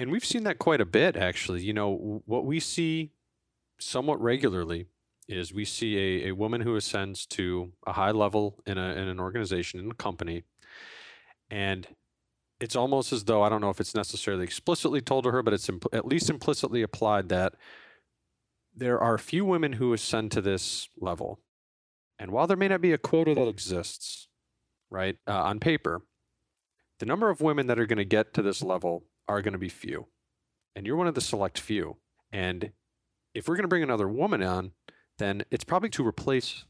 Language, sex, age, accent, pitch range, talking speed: English, male, 40-59, American, 95-120 Hz, 190 wpm